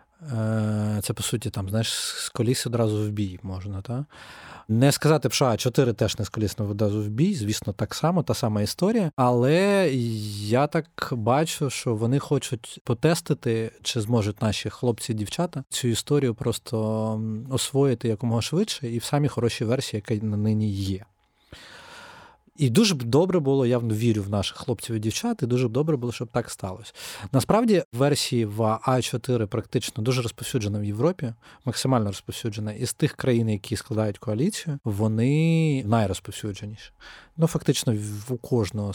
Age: 20-39